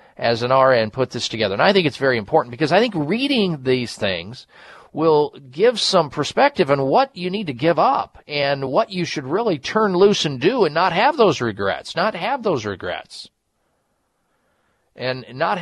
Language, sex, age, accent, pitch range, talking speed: English, male, 50-69, American, 130-180 Hz, 190 wpm